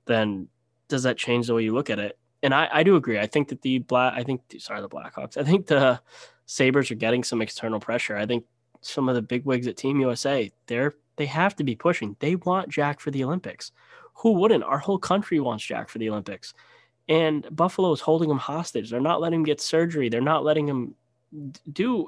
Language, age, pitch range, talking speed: English, 10-29, 115-155 Hz, 230 wpm